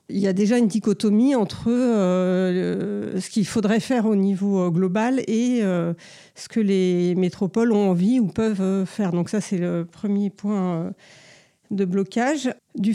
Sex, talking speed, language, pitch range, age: female, 160 wpm, French, 185-220 Hz, 50-69